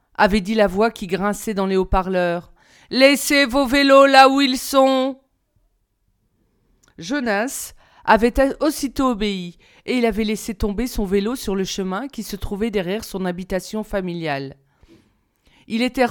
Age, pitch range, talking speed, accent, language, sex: 40-59, 185-240 Hz, 145 wpm, French, French, female